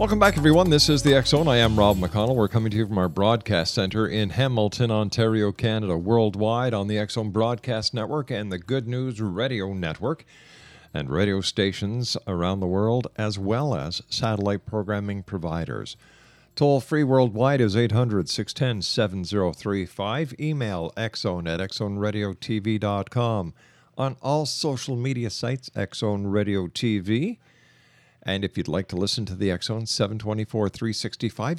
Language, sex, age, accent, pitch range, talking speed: English, male, 50-69, American, 100-130 Hz, 140 wpm